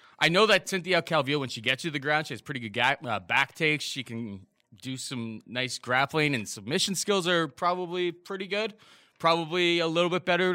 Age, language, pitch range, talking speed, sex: 20-39, English, 120-175 Hz, 210 wpm, male